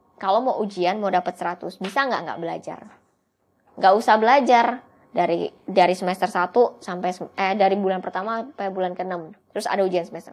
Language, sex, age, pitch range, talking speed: Indonesian, male, 20-39, 180-225 Hz, 170 wpm